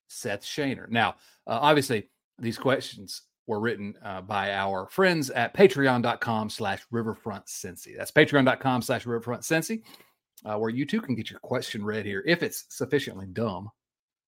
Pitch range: 110-155 Hz